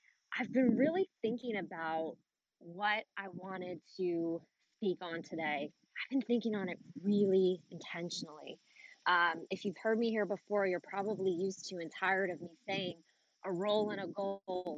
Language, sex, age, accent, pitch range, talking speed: English, female, 20-39, American, 175-210 Hz, 160 wpm